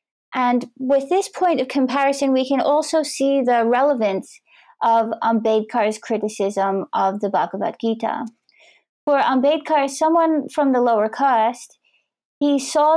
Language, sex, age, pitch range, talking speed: English, female, 30-49, 215-265 Hz, 130 wpm